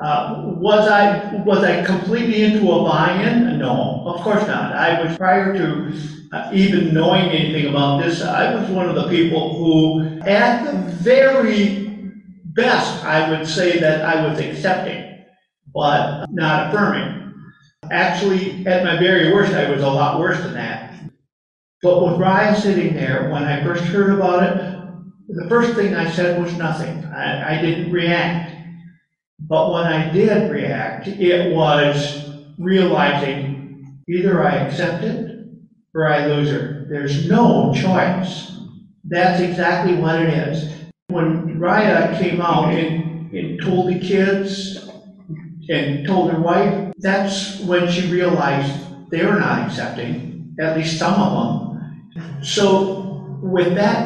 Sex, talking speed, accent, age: male, 145 wpm, American, 50-69